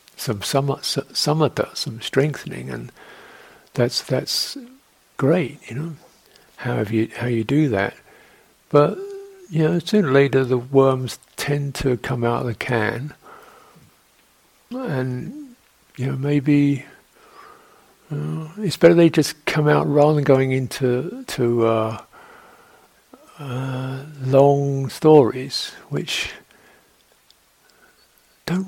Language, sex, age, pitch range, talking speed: English, male, 60-79, 125-160 Hz, 115 wpm